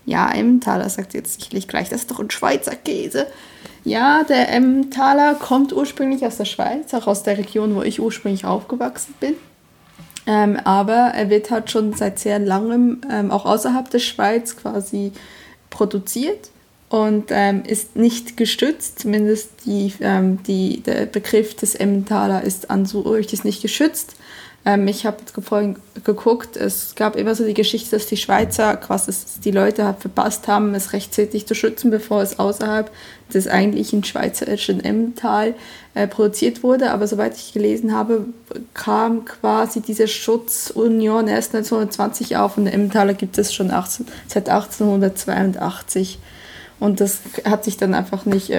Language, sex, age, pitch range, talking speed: German, female, 20-39, 200-230 Hz, 150 wpm